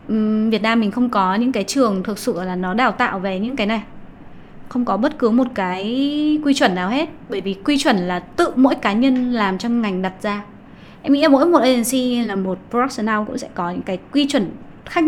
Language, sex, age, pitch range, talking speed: Vietnamese, female, 20-39, 190-255 Hz, 230 wpm